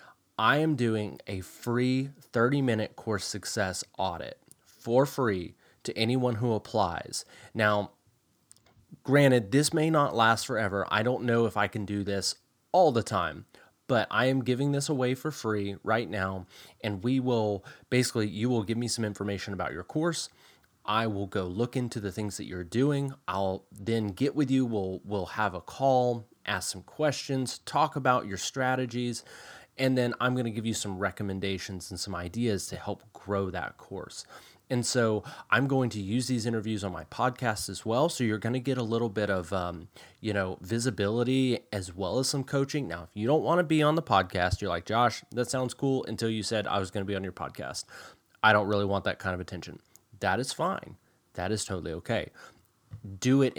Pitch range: 100-130 Hz